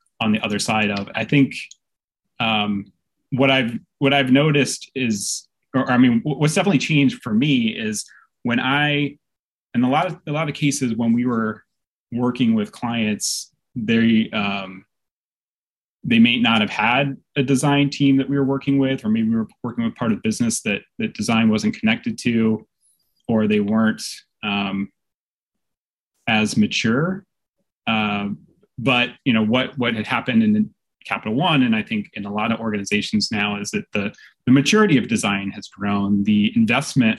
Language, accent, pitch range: English, American, 110-170 Hz